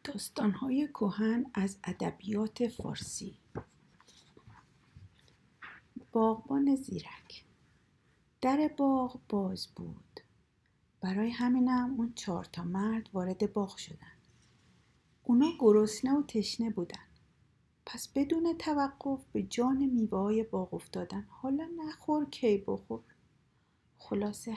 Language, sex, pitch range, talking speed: Persian, female, 185-240 Hz, 90 wpm